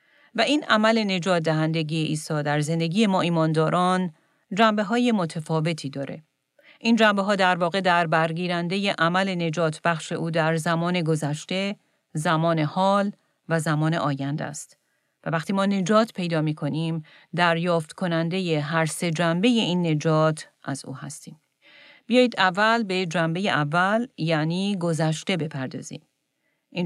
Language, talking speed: Persian, 130 wpm